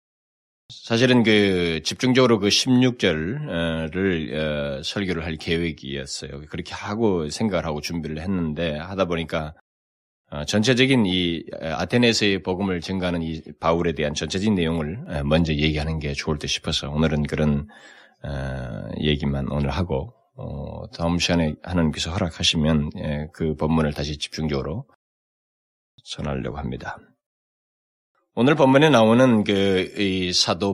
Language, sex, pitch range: Korean, male, 75-100 Hz